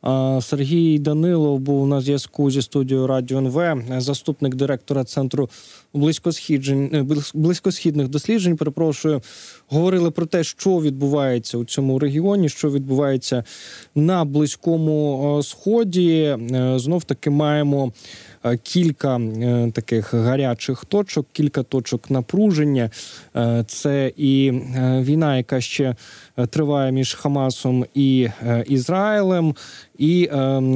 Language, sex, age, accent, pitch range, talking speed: Ukrainian, male, 20-39, native, 125-150 Hz, 100 wpm